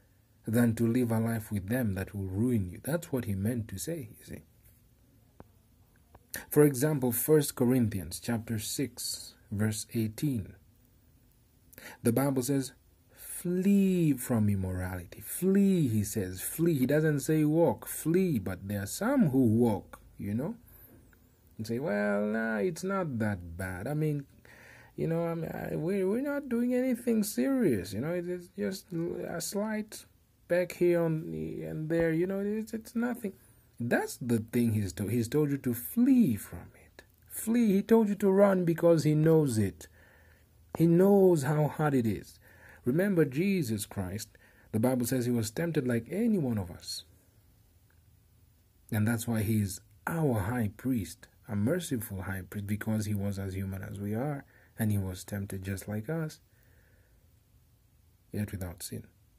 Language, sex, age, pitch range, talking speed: English, male, 40-59, 100-160 Hz, 160 wpm